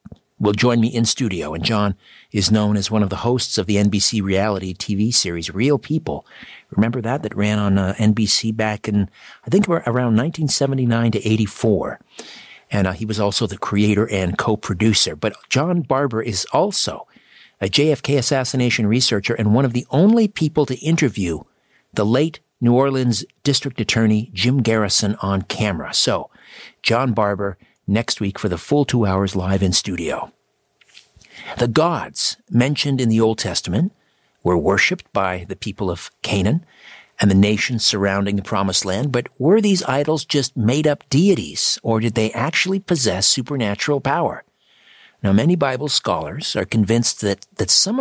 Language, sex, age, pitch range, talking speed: English, male, 50-69, 105-140 Hz, 160 wpm